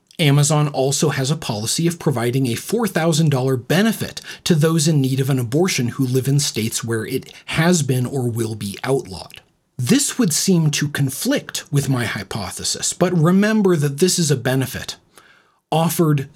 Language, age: English, 30-49